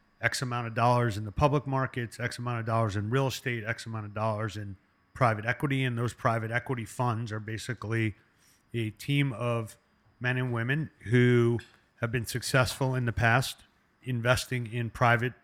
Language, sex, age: English, male, 40-59